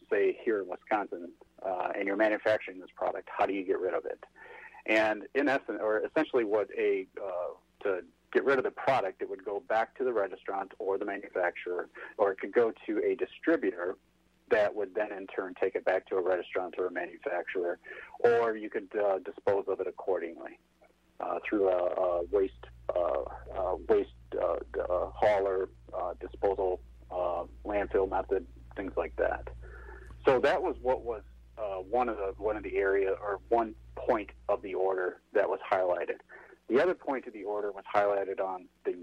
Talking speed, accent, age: 185 wpm, American, 40-59